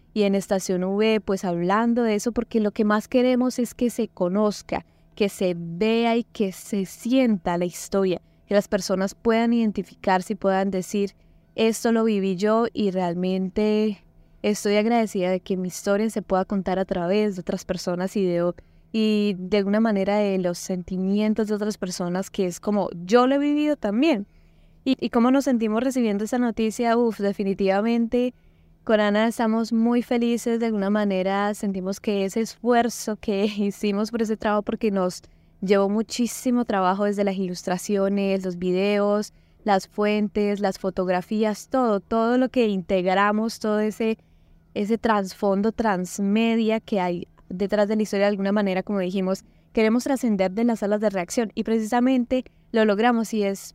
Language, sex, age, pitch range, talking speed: Spanish, female, 10-29, 195-225 Hz, 165 wpm